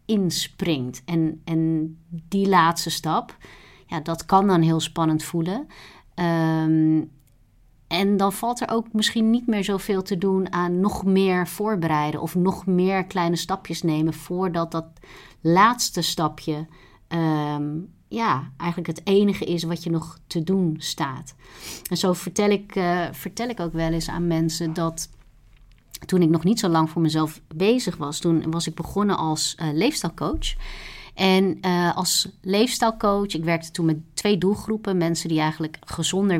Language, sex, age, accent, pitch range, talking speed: Dutch, female, 30-49, Dutch, 160-190 Hz, 155 wpm